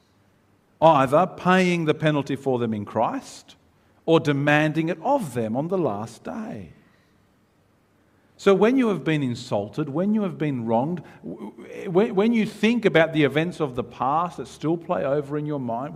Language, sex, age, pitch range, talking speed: English, male, 50-69, 105-170 Hz, 165 wpm